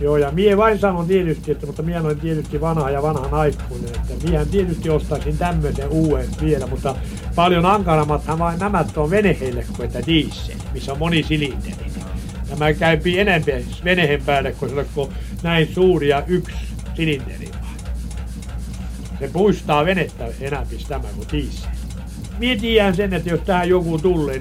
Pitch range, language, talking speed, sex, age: 145-185 Hz, Finnish, 135 wpm, male, 60-79